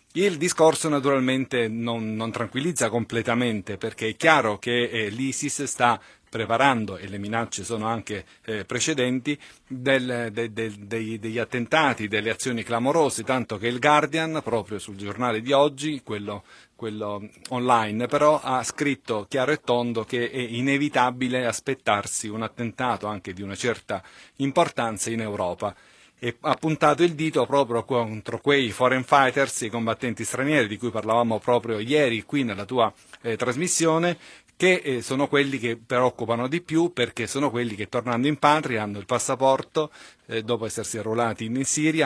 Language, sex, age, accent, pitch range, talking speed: Italian, male, 40-59, native, 110-135 Hz, 145 wpm